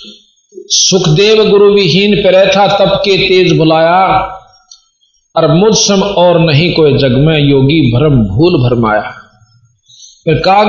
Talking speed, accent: 125 wpm, native